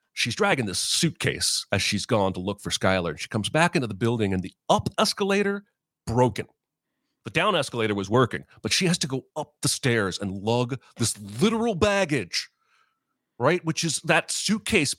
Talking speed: 180 wpm